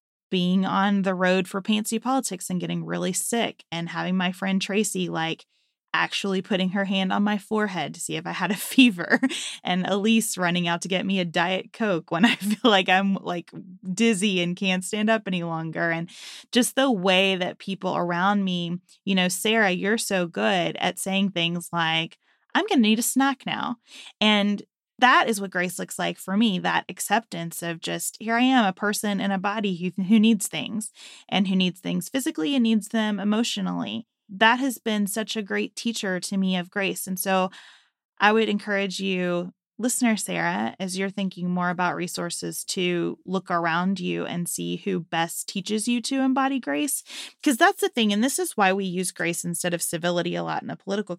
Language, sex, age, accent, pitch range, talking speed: English, female, 20-39, American, 180-220 Hz, 200 wpm